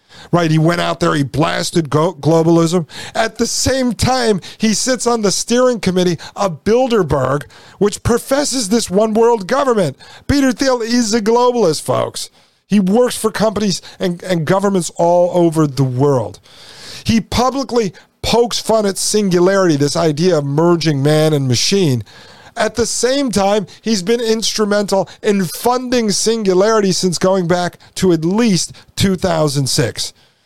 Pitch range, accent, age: 160-215 Hz, American, 40-59